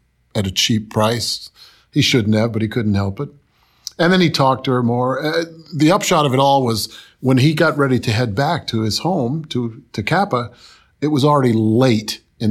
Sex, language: male, English